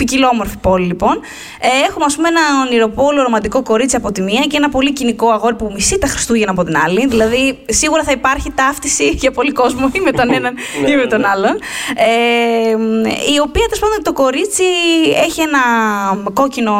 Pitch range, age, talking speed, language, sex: 225-305 Hz, 20-39, 180 wpm, Greek, female